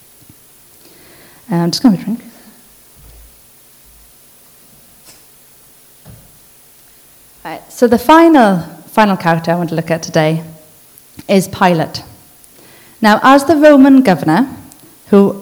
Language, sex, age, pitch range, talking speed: English, female, 30-49, 165-220 Hz, 95 wpm